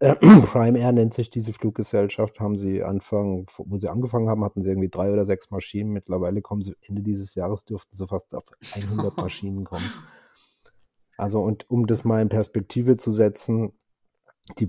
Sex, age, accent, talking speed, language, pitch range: male, 30-49, German, 175 wpm, German, 95-110 Hz